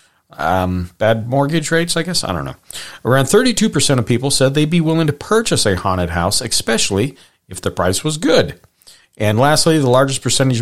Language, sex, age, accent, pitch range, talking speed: English, male, 40-59, American, 100-140 Hz, 185 wpm